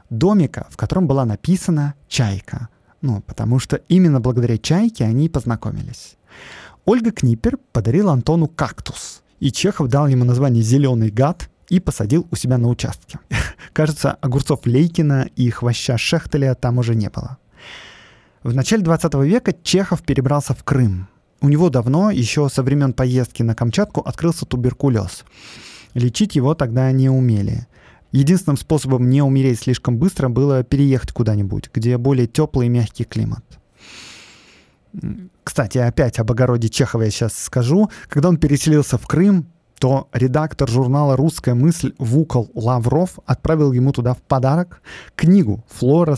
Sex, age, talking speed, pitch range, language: male, 20-39, 140 wpm, 120-155 Hz, Russian